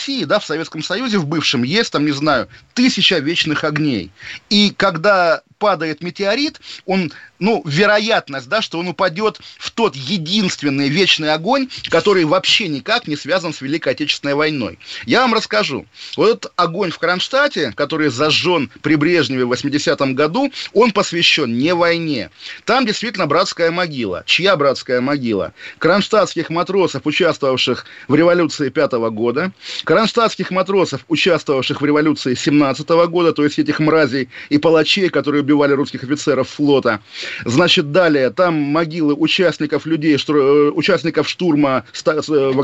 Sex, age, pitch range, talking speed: male, 30-49, 145-185 Hz, 140 wpm